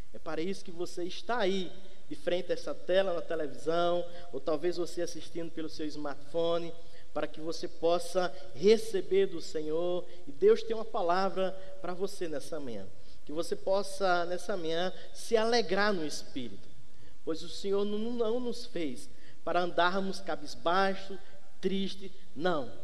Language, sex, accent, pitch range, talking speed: Portuguese, male, Brazilian, 165-195 Hz, 150 wpm